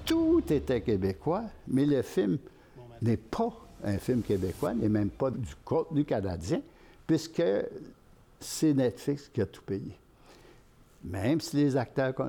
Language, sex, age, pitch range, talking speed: French, male, 60-79, 105-140 Hz, 135 wpm